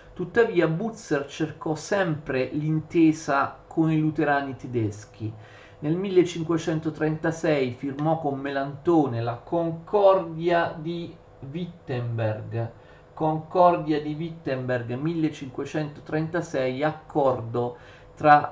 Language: Italian